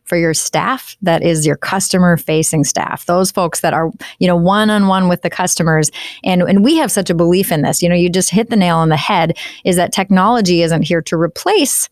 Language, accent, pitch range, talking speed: English, American, 170-205 Hz, 235 wpm